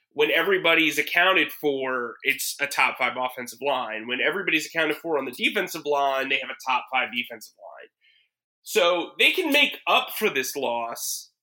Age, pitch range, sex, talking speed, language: 30-49, 130-210 Hz, male, 175 wpm, English